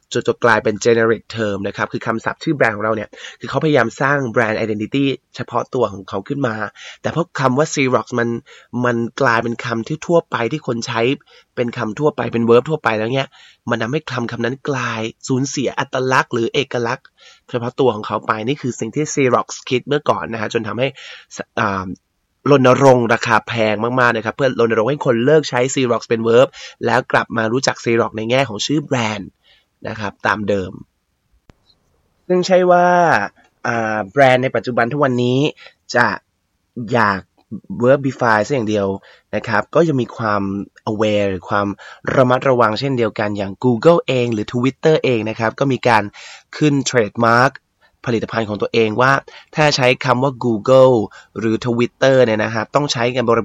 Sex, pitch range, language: male, 110-135 Hz, Thai